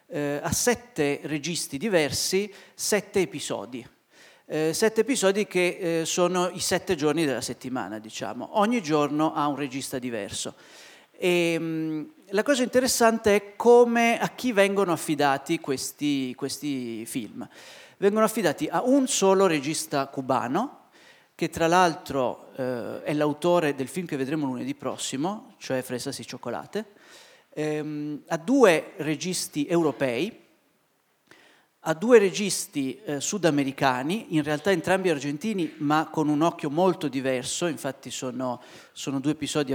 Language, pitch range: Italian, 145-190 Hz